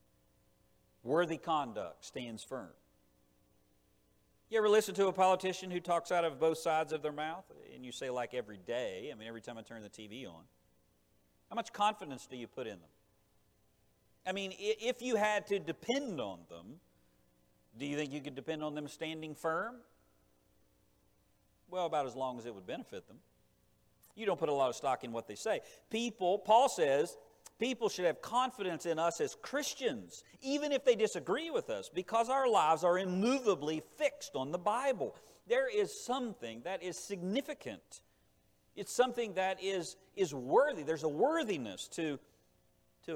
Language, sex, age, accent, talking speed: English, male, 50-69, American, 170 wpm